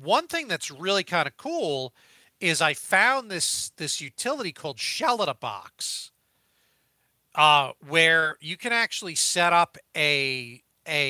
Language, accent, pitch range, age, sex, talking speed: English, American, 140-175 Hz, 40-59, male, 145 wpm